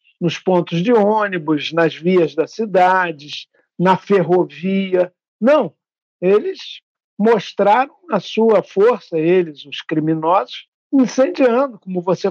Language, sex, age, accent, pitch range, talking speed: Portuguese, male, 60-79, Brazilian, 175-235 Hz, 105 wpm